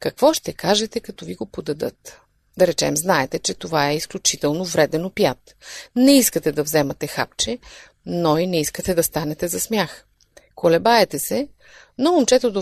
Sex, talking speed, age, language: female, 160 wpm, 30-49, Bulgarian